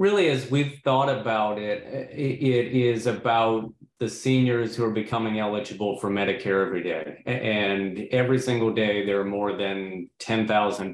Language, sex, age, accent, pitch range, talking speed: English, male, 40-59, American, 100-115 Hz, 155 wpm